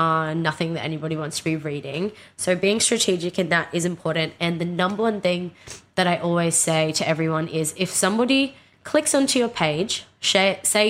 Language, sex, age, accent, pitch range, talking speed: English, female, 20-39, Australian, 155-185 Hz, 185 wpm